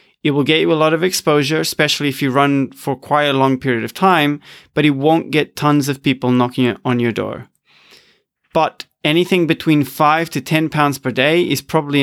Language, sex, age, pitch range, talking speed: English, male, 30-49, 135-160 Hz, 205 wpm